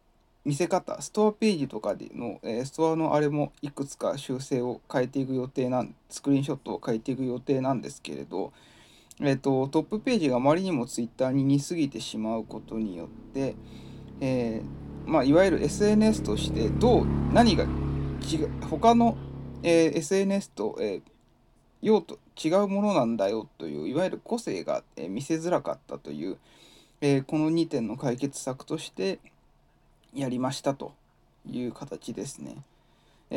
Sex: male